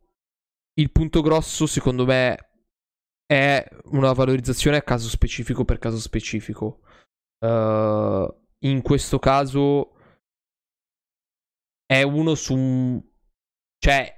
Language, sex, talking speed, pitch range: Italian, male, 95 wpm, 115-135 Hz